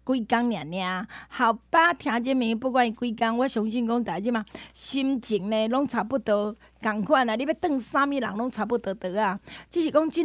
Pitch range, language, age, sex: 230-320 Hz, Chinese, 20-39, female